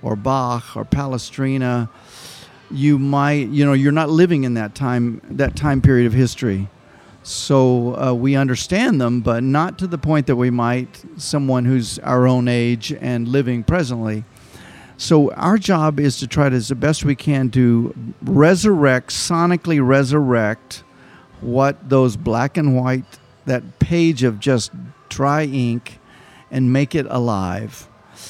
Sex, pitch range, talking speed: male, 125-150 Hz, 150 wpm